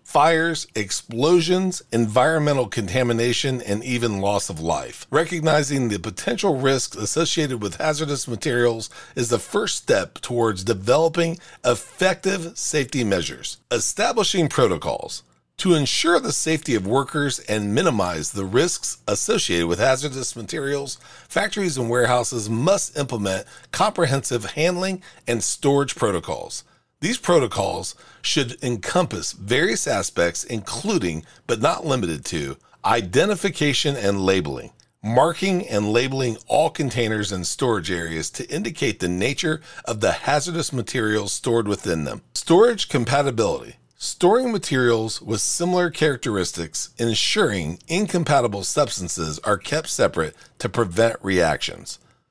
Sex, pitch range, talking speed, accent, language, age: male, 110-160 Hz, 115 wpm, American, English, 40-59